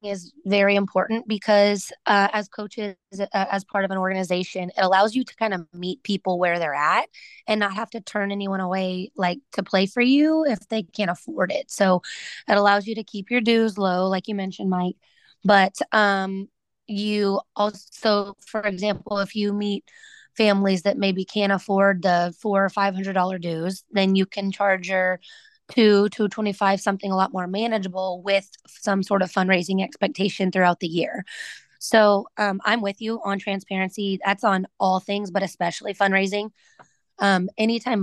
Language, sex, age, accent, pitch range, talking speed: English, female, 20-39, American, 190-215 Hz, 175 wpm